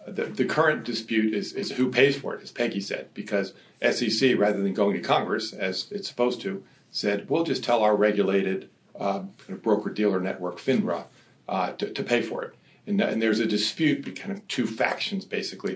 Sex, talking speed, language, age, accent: male, 200 wpm, English, 50-69, American